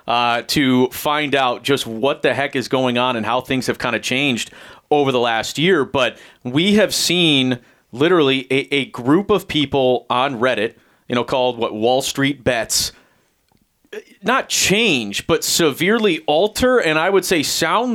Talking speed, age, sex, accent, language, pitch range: 170 wpm, 30-49, male, American, English, 130-165 Hz